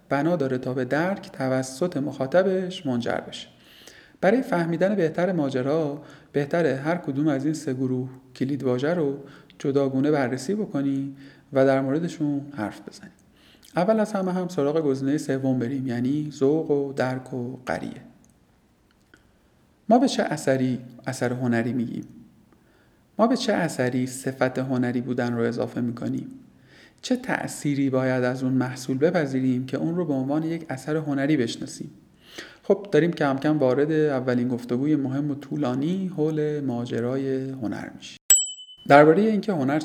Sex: male